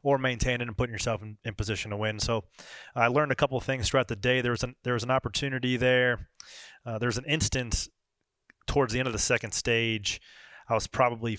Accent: American